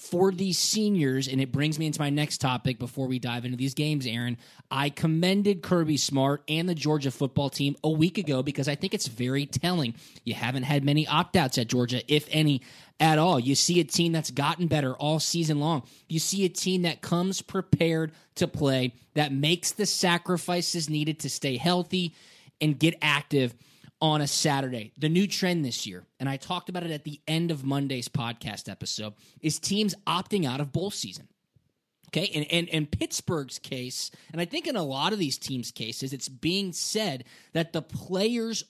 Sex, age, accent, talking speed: male, 20-39, American, 195 wpm